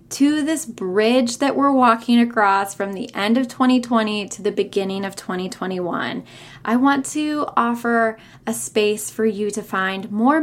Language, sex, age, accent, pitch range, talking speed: English, female, 10-29, American, 205-245 Hz, 160 wpm